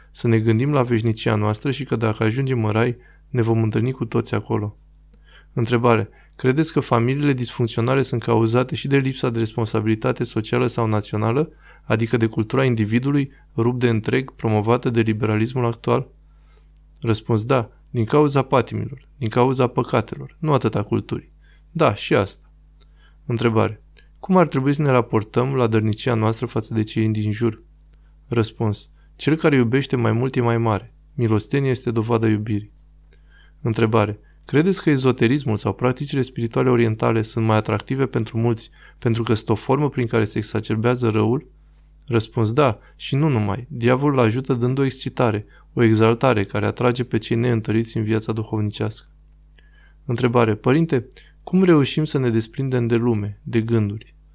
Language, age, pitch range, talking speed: Romanian, 20-39, 110-130 Hz, 155 wpm